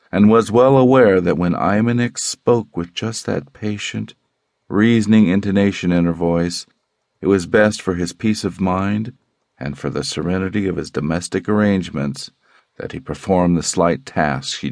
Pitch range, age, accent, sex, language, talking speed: 85-115 Hz, 50-69, American, male, English, 165 wpm